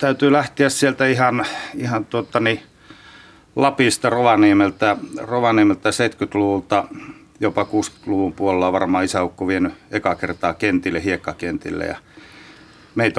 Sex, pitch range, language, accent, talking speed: male, 95-115 Hz, Finnish, native, 100 wpm